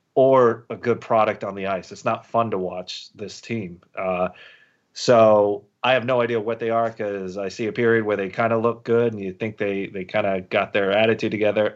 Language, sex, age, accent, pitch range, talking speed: English, male, 30-49, American, 100-115 Hz, 225 wpm